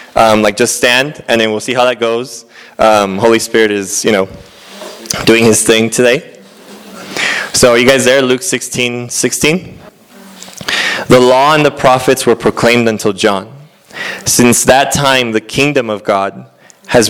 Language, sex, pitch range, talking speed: English, male, 105-125 Hz, 160 wpm